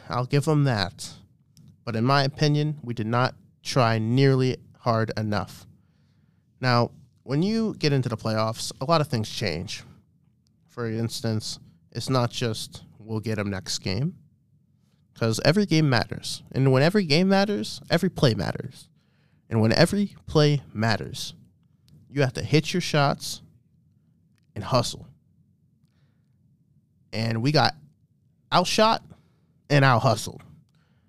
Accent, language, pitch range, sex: American, English, 120-150 Hz, male